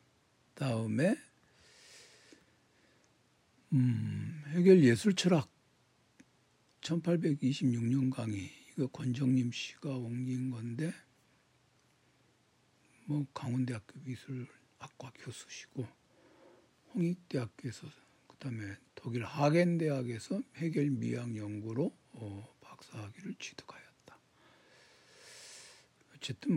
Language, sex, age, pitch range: Korean, male, 60-79, 120-155 Hz